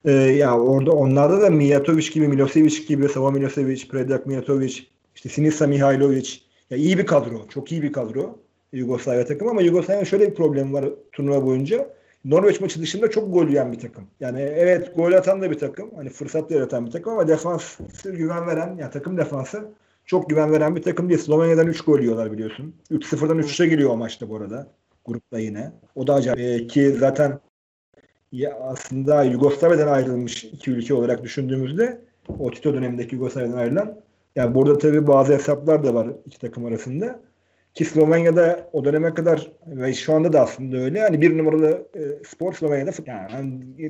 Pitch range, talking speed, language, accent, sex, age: 130-165 Hz, 170 wpm, Turkish, native, male, 40-59